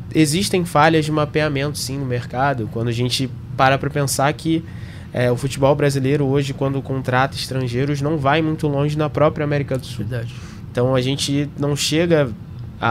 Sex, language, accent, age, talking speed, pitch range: male, Portuguese, Brazilian, 20-39, 165 wpm, 120-150 Hz